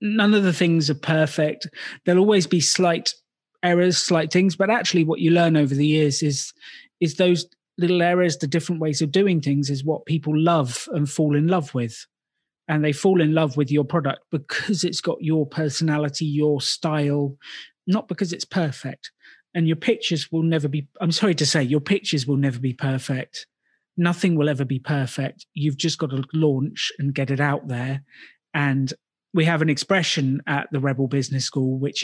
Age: 30-49